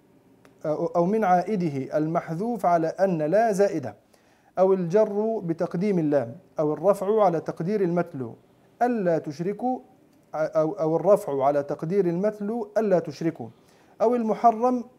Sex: male